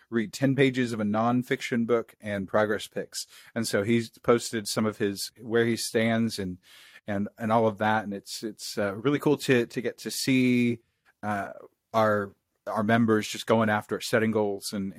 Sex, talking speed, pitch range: male, 190 wpm, 95-120 Hz